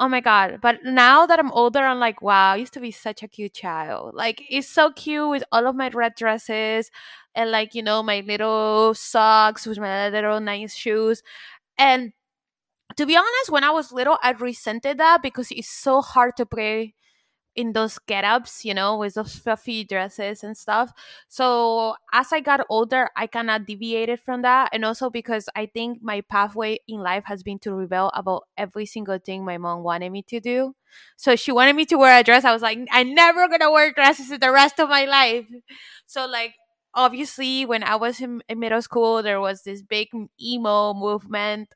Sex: female